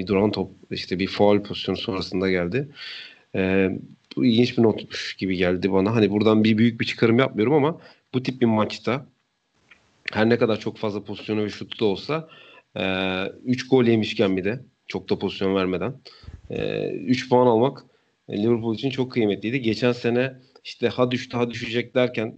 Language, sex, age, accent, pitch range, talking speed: Turkish, male, 40-59, native, 95-120 Hz, 165 wpm